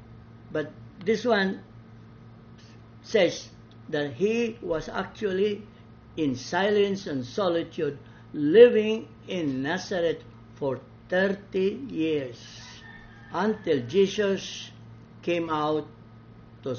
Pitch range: 115-160 Hz